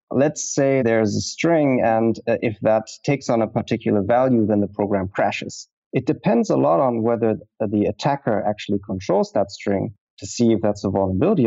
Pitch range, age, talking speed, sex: 110-135 Hz, 30-49, 185 wpm, male